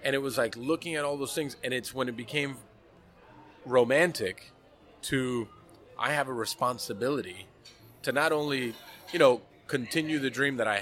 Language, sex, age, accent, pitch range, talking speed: English, male, 30-49, American, 120-150 Hz, 165 wpm